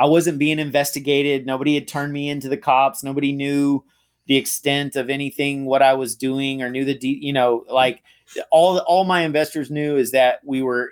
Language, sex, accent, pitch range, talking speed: English, male, American, 130-150 Hz, 205 wpm